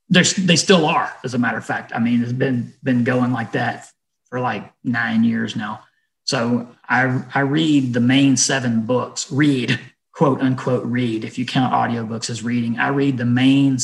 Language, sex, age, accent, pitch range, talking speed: English, male, 40-59, American, 125-155 Hz, 190 wpm